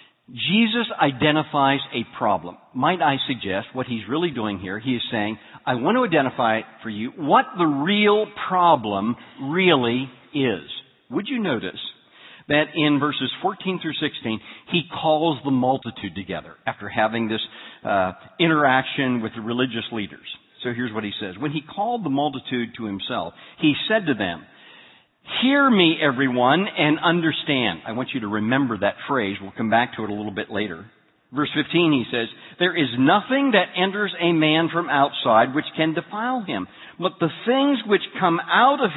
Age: 50-69